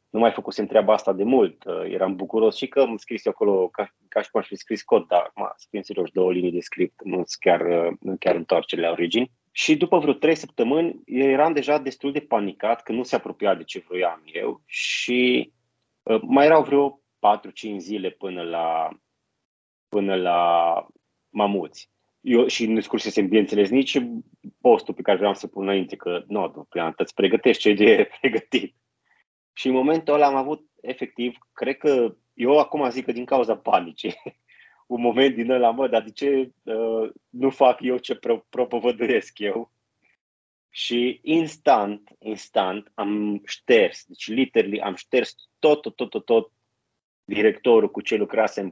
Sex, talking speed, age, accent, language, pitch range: male, 170 wpm, 30-49, native, Romanian, 100-135 Hz